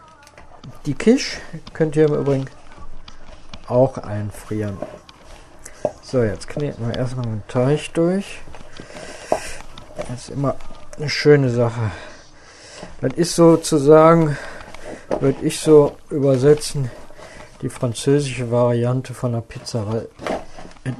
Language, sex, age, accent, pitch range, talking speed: German, male, 50-69, German, 125-150 Hz, 105 wpm